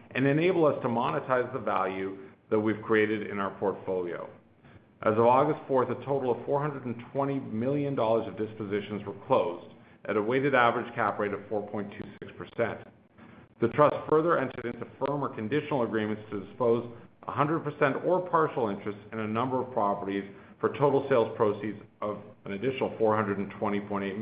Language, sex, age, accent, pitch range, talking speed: English, male, 50-69, American, 105-135 Hz, 155 wpm